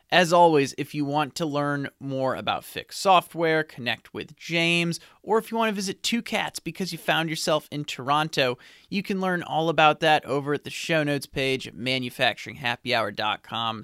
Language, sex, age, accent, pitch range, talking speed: English, male, 30-49, American, 125-155 Hz, 180 wpm